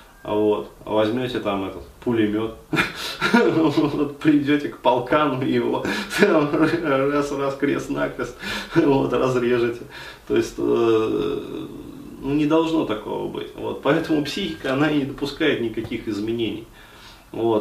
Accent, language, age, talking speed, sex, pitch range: native, Russian, 20-39, 80 wpm, male, 105-135 Hz